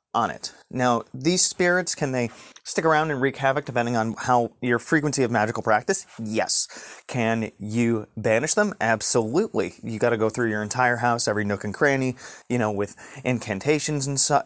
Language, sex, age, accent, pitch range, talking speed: English, male, 30-49, American, 110-135 Hz, 185 wpm